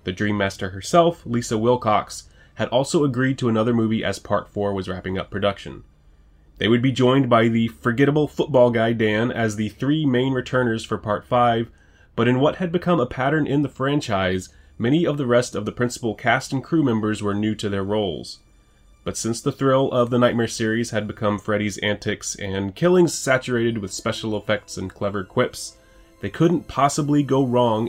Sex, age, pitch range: male, 20-39, 105-135 Hz